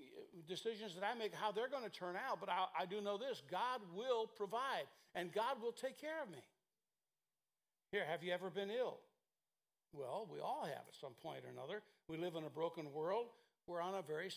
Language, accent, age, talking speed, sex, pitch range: English, American, 60-79, 215 wpm, male, 180-225 Hz